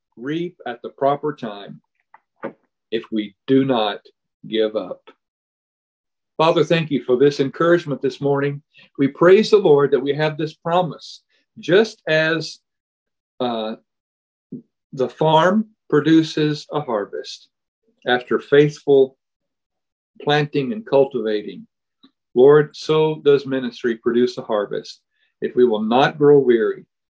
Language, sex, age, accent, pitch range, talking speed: English, male, 50-69, American, 130-185 Hz, 120 wpm